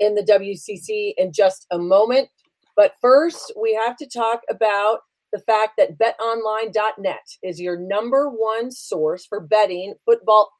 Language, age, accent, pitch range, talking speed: English, 30-49, American, 195-270 Hz, 145 wpm